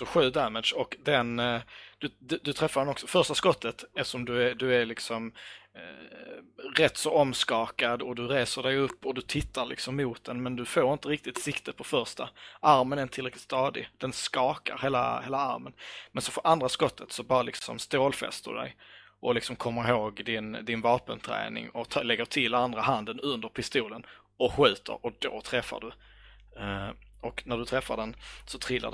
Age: 20-39